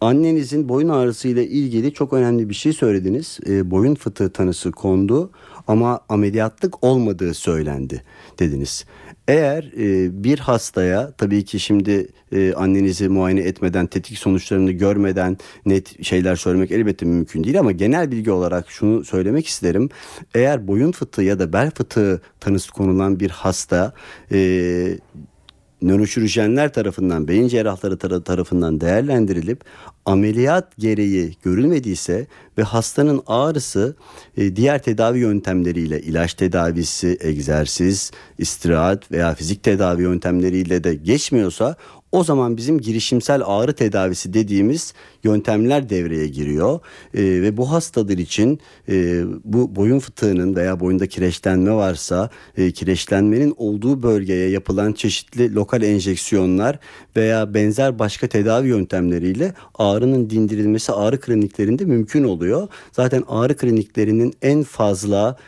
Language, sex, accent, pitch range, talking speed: Turkish, male, native, 95-115 Hz, 120 wpm